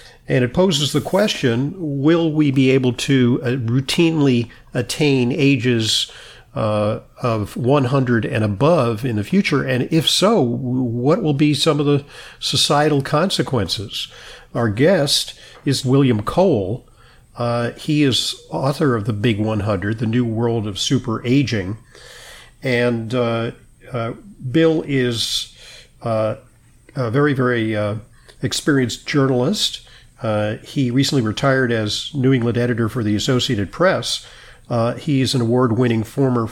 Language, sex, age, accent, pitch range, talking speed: English, male, 50-69, American, 115-135 Hz, 135 wpm